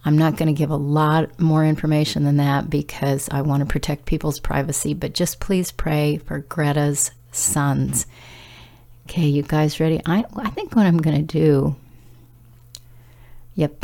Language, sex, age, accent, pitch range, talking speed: English, female, 50-69, American, 125-165 Hz, 165 wpm